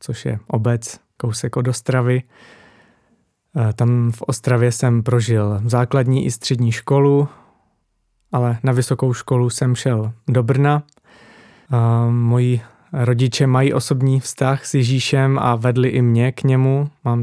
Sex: male